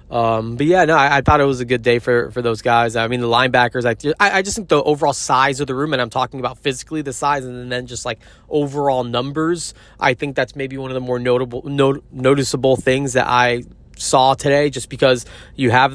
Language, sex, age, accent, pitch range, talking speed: English, male, 20-39, American, 120-135 Hz, 240 wpm